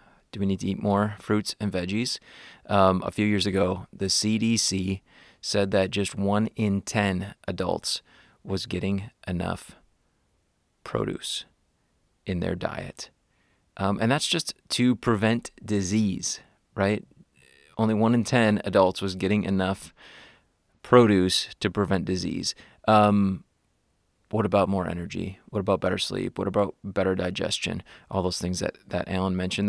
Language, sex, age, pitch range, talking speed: English, male, 30-49, 95-110 Hz, 140 wpm